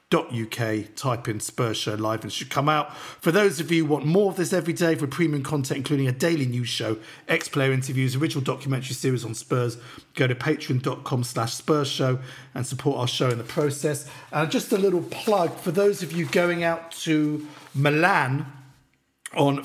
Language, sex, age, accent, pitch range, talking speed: English, male, 50-69, British, 130-160 Hz, 185 wpm